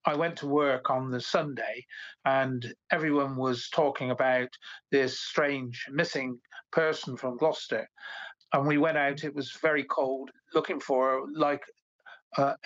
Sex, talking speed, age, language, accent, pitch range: male, 140 wpm, 50-69, English, British, 130-150 Hz